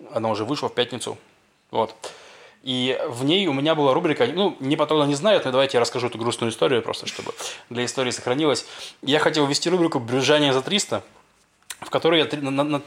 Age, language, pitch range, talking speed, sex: 20-39, Russian, 125-150 Hz, 190 wpm, male